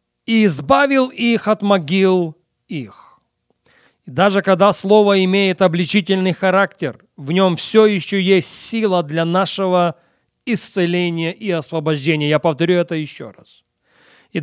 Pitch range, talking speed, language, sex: 165-215 Hz, 125 wpm, Russian, male